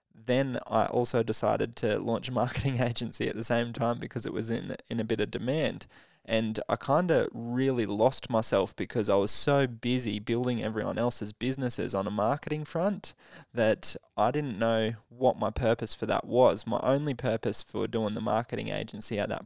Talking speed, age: 190 wpm, 20-39